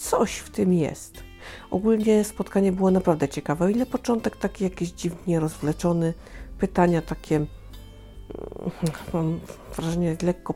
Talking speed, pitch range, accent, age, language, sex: 120 wpm, 155-195 Hz, native, 50-69, Polish, female